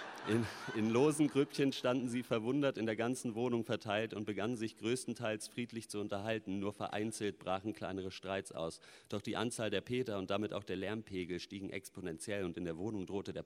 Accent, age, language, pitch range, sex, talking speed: German, 40-59, German, 95-115 Hz, male, 190 wpm